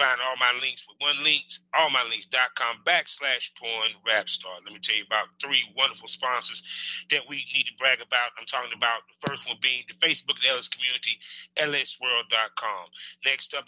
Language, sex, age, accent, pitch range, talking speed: English, male, 30-49, American, 115-150 Hz, 175 wpm